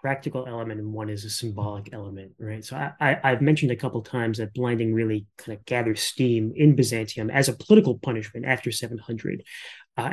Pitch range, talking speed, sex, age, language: 115-150 Hz, 200 wpm, male, 30-49, English